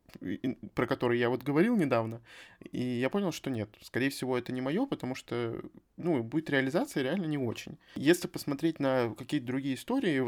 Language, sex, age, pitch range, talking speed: Russian, male, 20-39, 115-140 Hz, 180 wpm